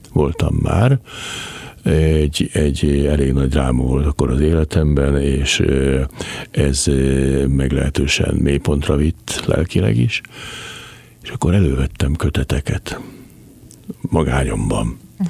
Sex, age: male, 60-79